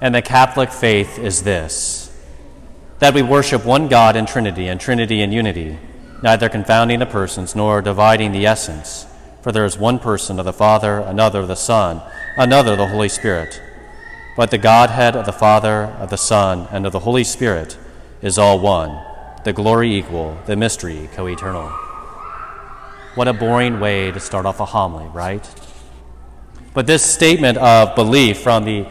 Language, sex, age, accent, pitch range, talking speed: English, male, 30-49, American, 95-120 Hz, 170 wpm